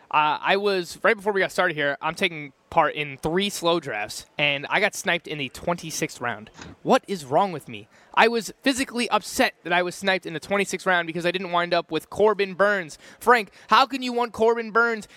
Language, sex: English, male